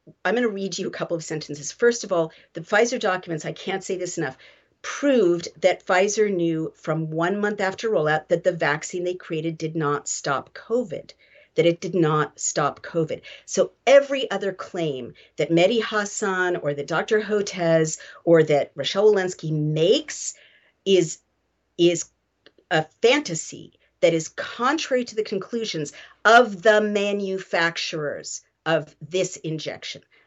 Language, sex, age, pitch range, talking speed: English, female, 50-69, 160-205 Hz, 150 wpm